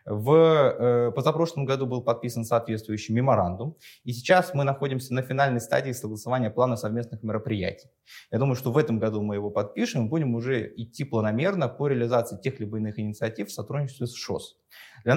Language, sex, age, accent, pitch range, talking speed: Russian, male, 20-39, native, 105-130 Hz, 170 wpm